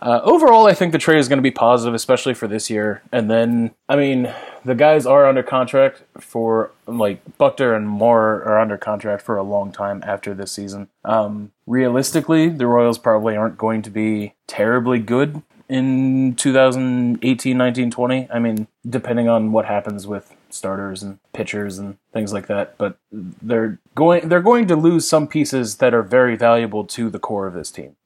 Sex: male